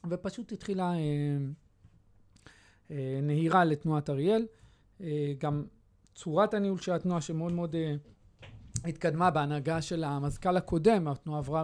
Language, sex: Hebrew, male